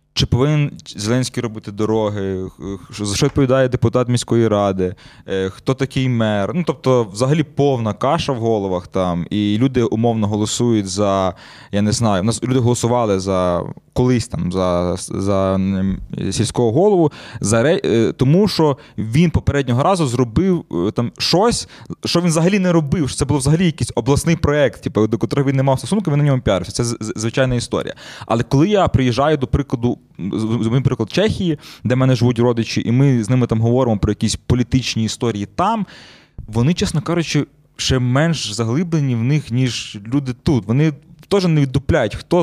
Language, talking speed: Ukrainian, 165 wpm